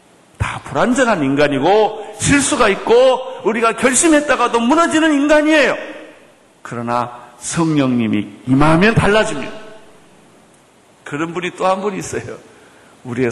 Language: Korean